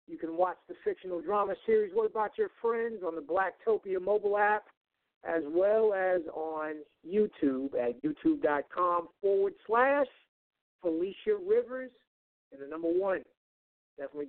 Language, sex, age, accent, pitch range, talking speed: English, male, 50-69, American, 155-210 Hz, 135 wpm